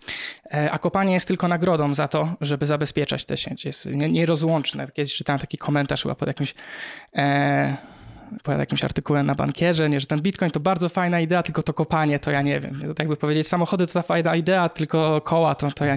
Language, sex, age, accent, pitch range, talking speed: Polish, male, 20-39, native, 145-170 Hz, 205 wpm